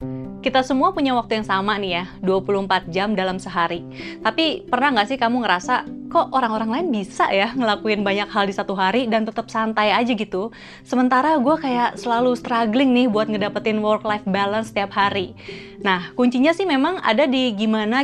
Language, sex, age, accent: Indonesian, female, 20-39, native